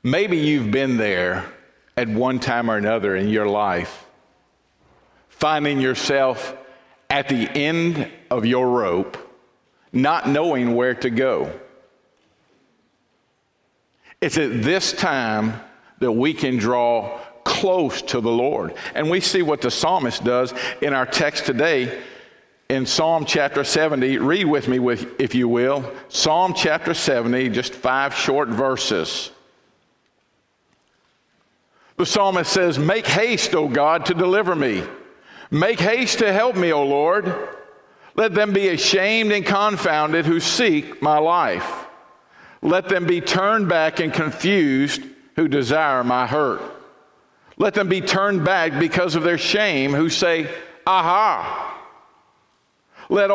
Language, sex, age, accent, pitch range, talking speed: English, male, 50-69, American, 130-185 Hz, 130 wpm